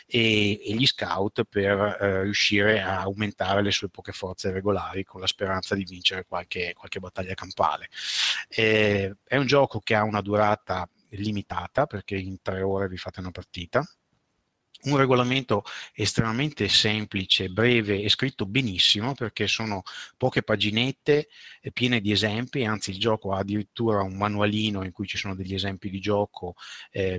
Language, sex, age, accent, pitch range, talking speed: Italian, male, 30-49, native, 100-110 Hz, 160 wpm